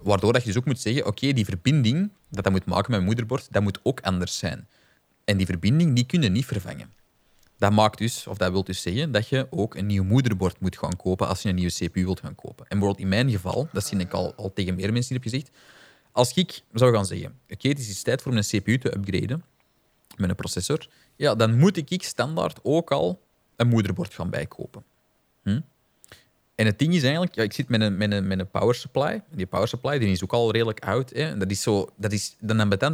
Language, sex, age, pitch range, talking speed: Dutch, male, 30-49, 95-125 Hz, 240 wpm